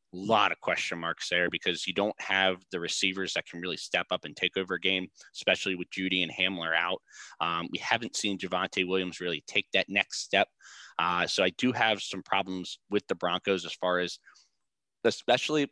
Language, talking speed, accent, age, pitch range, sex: English, 200 wpm, American, 20-39, 90-100 Hz, male